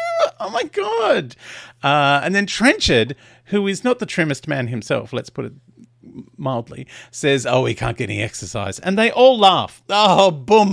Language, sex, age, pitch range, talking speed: English, male, 40-59, 110-155 Hz, 175 wpm